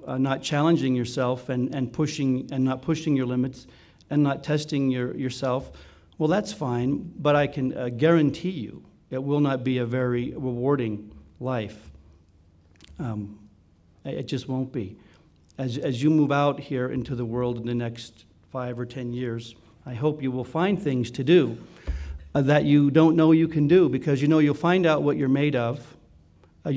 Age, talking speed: 50-69, 185 wpm